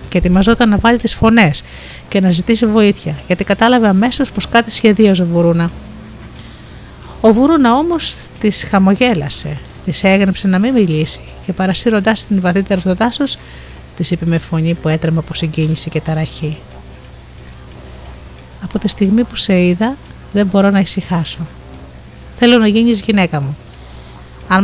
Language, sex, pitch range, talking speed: Greek, female, 160-215 Hz, 145 wpm